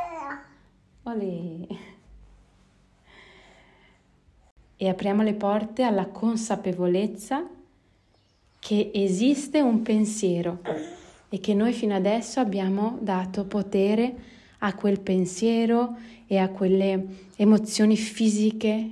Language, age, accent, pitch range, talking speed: Italian, 30-49, native, 185-225 Hz, 80 wpm